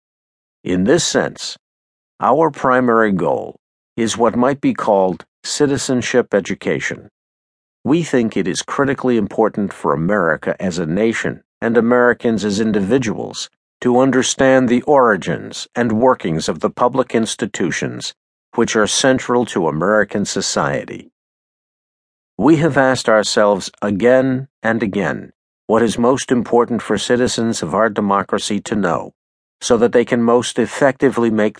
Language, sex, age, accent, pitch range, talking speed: English, male, 50-69, American, 105-130 Hz, 130 wpm